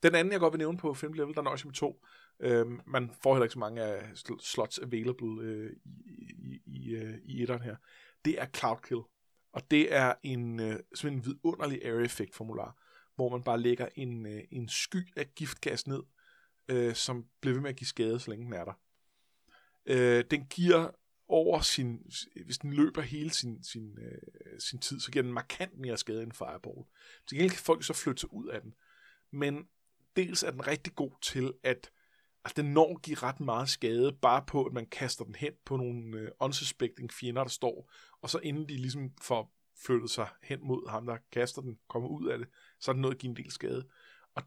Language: Danish